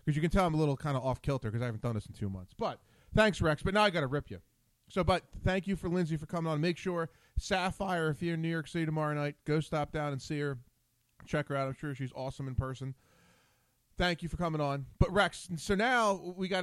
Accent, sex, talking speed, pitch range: American, male, 270 wpm, 125-175 Hz